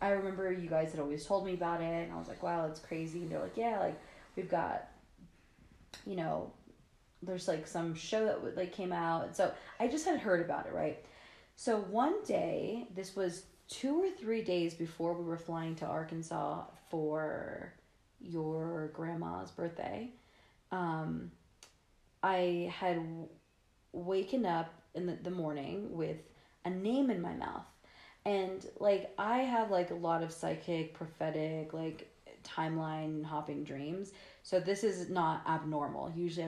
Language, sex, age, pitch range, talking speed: English, female, 30-49, 160-190 Hz, 160 wpm